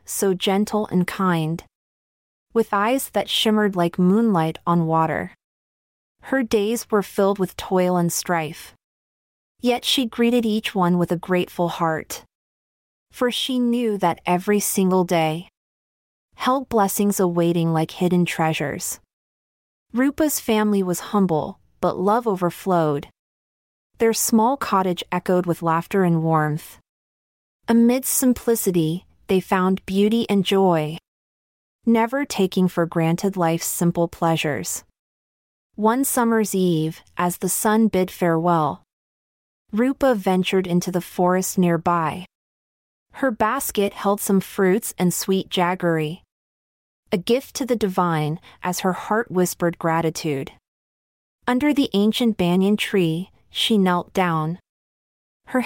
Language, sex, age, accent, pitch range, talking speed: English, female, 30-49, American, 170-215 Hz, 120 wpm